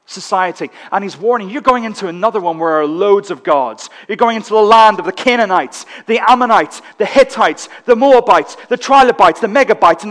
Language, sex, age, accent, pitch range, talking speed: English, male, 40-59, British, 195-270 Hz, 200 wpm